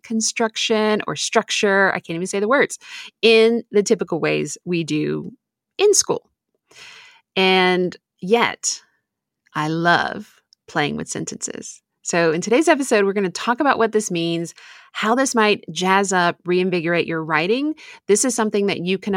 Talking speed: 155 wpm